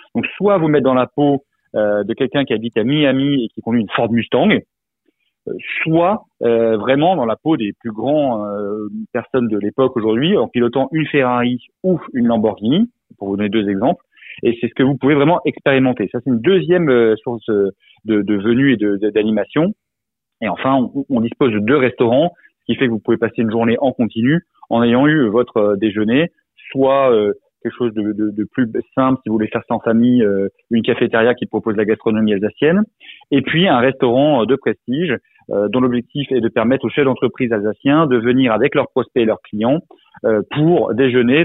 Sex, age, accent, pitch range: male, 30-49, French, 110-140 Hz